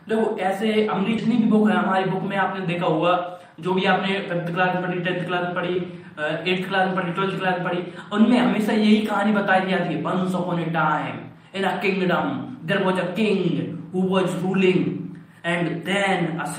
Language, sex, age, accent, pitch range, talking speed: Hindi, male, 20-39, native, 175-210 Hz, 85 wpm